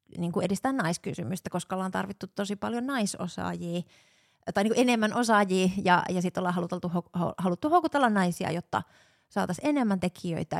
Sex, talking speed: female, 140 wpm